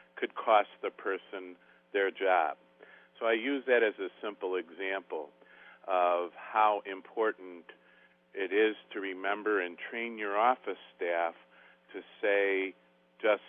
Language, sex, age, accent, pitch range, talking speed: English, male, 50-69, American, 95-125 Hz, 130 wpm